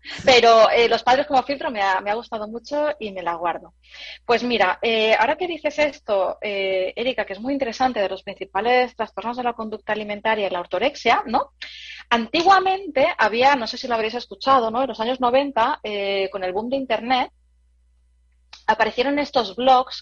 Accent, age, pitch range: Spanish, 20-39, 195-260 Hz